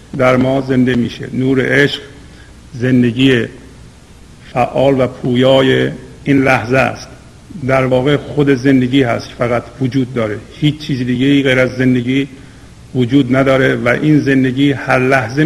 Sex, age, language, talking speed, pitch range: male, 50-69, Persian, 135 wpm, 125-140 Hz